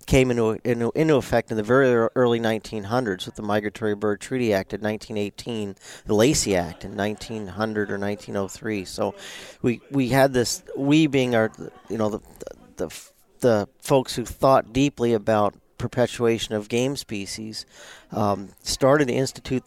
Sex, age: male, 40-59